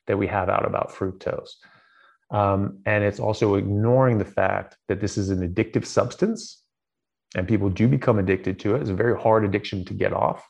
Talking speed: 195 wpm